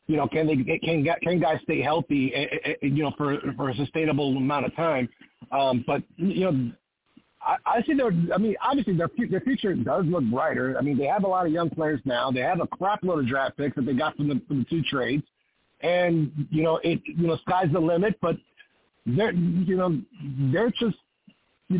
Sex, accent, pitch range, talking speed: male, American, 145-190 Hz, 215 wpm